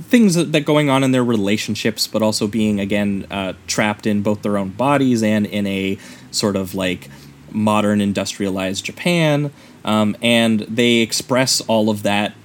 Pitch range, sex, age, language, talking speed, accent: 100-115 Hz, male, 20-39, English, 170 wpm, American